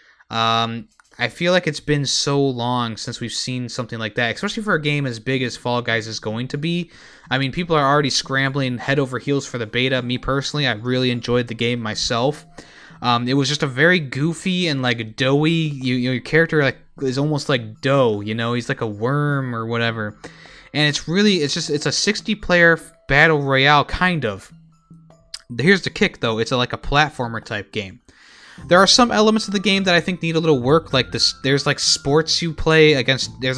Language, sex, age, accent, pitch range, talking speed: English, male, 20-39, American, 120-155 Hz, 215 wpm